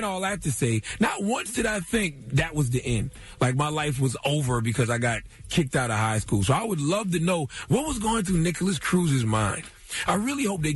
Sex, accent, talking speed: male, American, 245 wpm